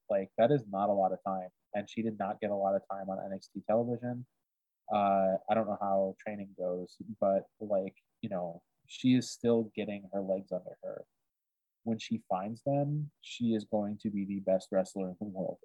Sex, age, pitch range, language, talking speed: male, 20-39, 95-115 Hz, English, 205 wpm